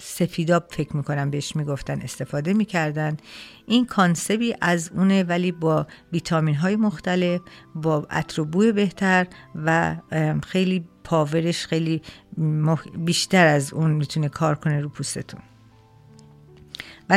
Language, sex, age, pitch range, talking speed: Persian, female, 50-69, 150-180 Hz, 110 wpm